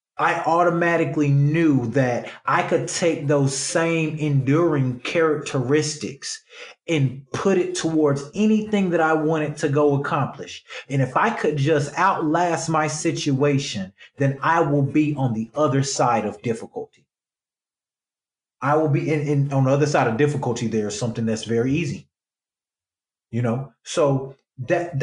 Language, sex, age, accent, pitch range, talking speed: English, male, 30-49, American, 135-165 Hz, 140 wpm